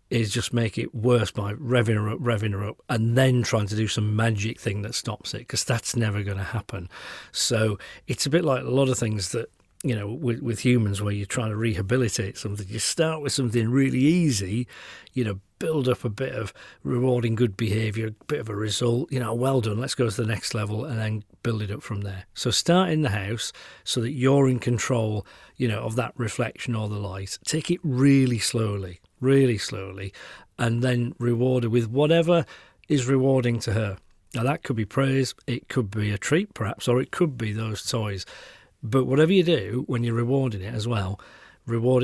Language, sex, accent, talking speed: English, male, British, 215 wpm